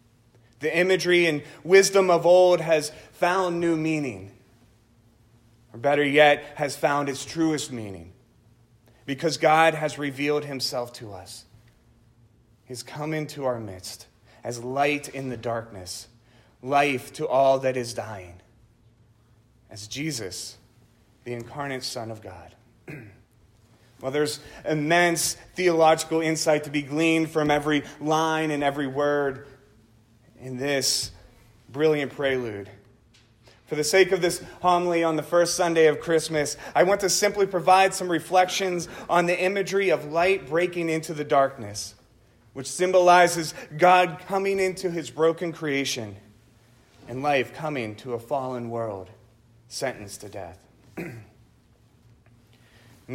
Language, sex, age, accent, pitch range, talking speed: English, male, 30-49, American, 115-170 Hz, 130 wpm